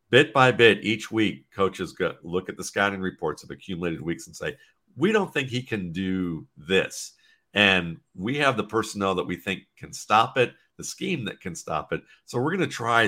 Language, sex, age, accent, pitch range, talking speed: English, male, 50-69, American, 90-110 Hz, 210 wpm